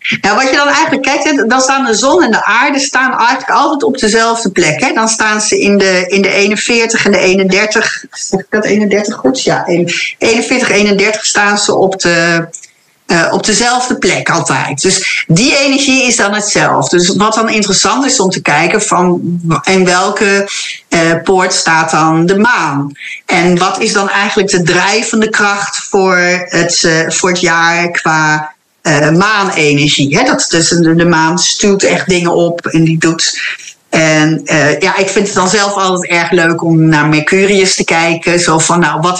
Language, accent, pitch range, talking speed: Dutch, Dutch, 165-210 Hz, 175 wpm